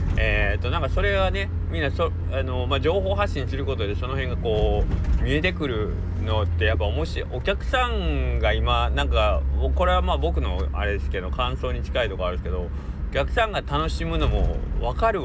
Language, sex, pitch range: Japanese, male, 75-125 Hz